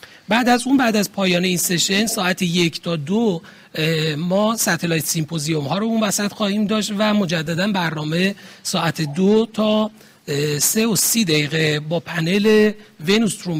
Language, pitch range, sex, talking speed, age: Persian, 160-205 Hz, male, 150 wpm, 40-59